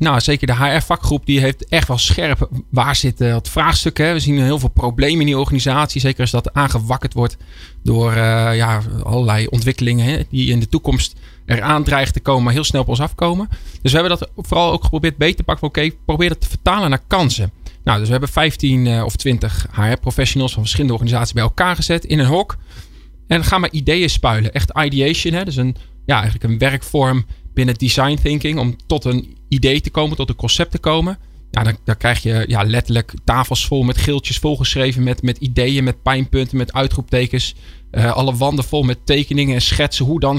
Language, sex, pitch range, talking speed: Dutch, male, 120-150 Hz, 210 wpm